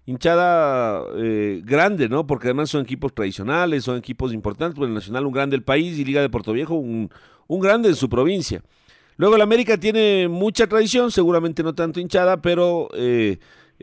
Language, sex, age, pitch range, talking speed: Spanish, male, 50-69, 140-205 Hz, 180 wpm